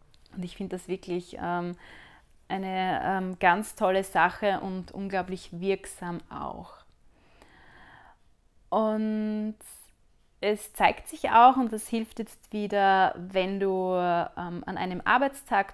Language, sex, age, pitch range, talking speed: German, female, 30-49, 180-215 Hz, 120 wpm